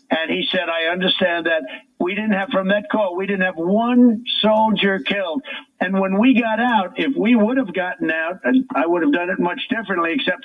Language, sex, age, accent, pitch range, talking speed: English, male, 60-79, American, 190-260 Hz, 220 wpm